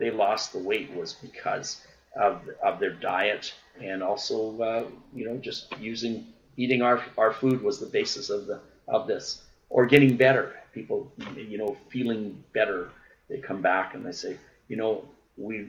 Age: 40-59